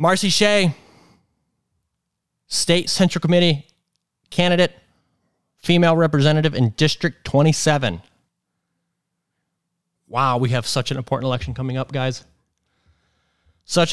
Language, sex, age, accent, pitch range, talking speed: English, male, 30-49, American, 135-175 Hz, 95 wpm